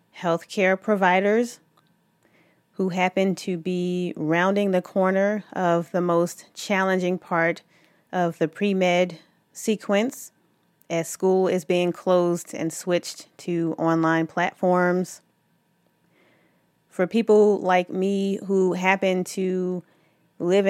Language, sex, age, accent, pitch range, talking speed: English, female, 30-49, American, 165-195 Hz, 105 wpm